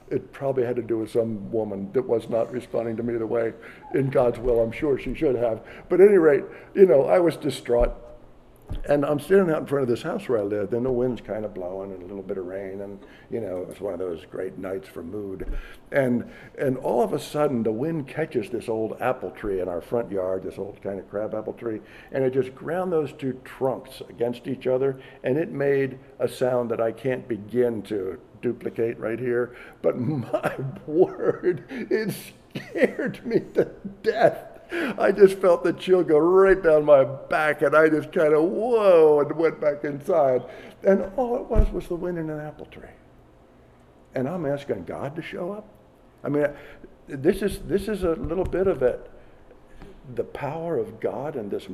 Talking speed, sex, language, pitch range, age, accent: 205 wpm, male, English, 115-170 Hz, 60-79, American